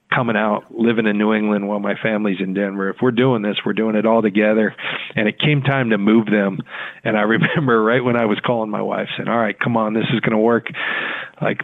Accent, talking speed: American, 245 wpm